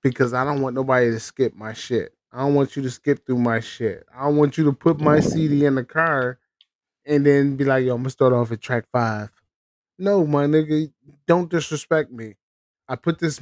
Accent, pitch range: American, 115-140 Hz